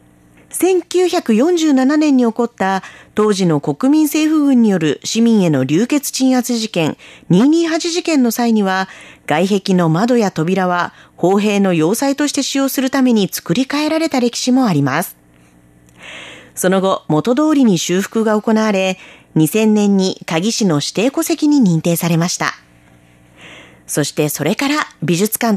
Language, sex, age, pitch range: Japanese, female, 40-59, 170-270 Hz